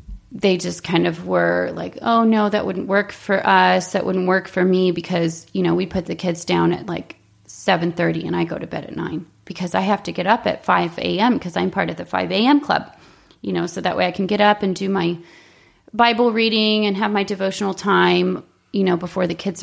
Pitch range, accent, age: 175-210 Hz, American, 30-49